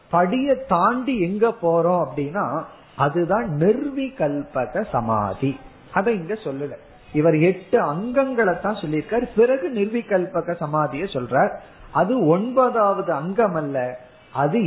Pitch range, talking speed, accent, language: 150-220 Hz, 100 wpm, native, Tamil